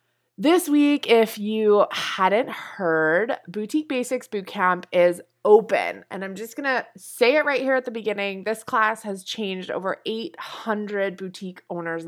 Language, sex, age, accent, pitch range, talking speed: English, female, 20-39, American, 180-260 Hz, 155 wpm